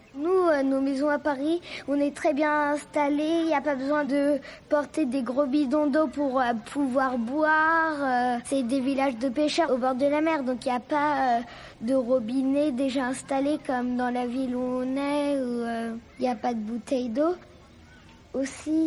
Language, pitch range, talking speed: French, 255-300 Hz, 200 wpm